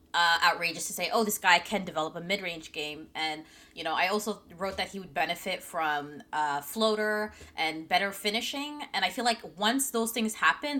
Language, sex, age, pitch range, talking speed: English, female, 20-39, 170-215 Hz, 200 wpm